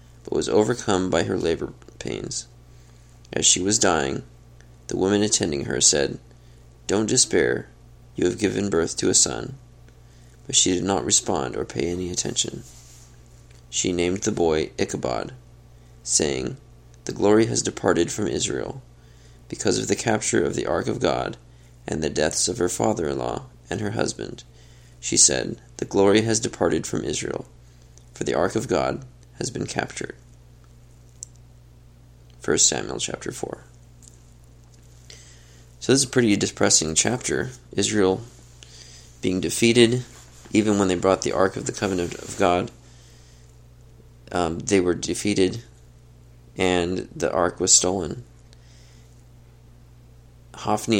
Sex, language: male, English